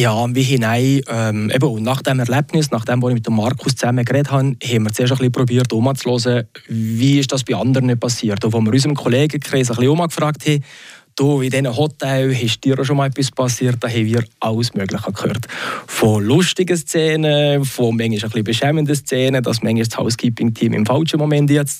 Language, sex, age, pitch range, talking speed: German, male, 20-39, 125-150 Hz, 190 wpm